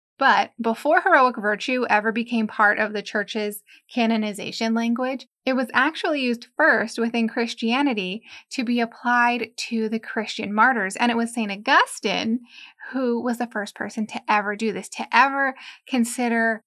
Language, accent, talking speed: English, American, 155 wpm